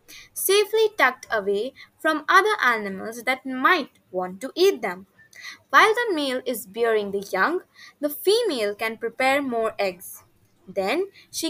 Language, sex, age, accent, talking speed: English, female, 20-39, Indian, 140 wpm